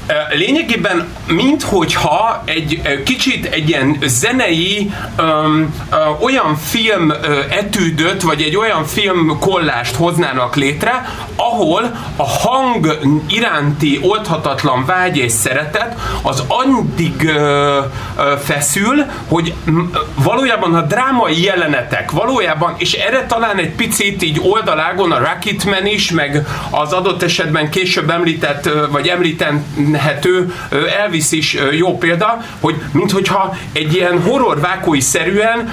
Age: 30-49